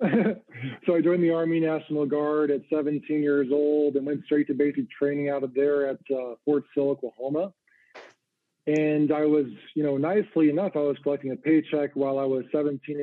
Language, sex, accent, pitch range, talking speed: English, male, American, 135-155 Hz, 190 wpm